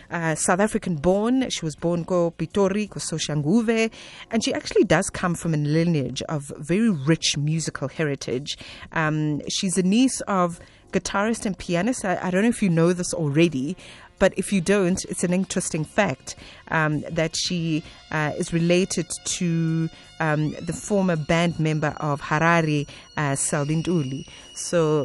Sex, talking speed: female, 155 wpm